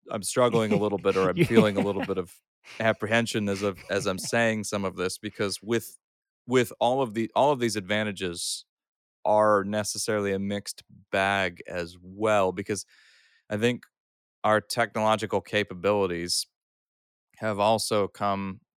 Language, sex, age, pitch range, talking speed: English, male, 30-49, 95-115 Hz, 150 wpm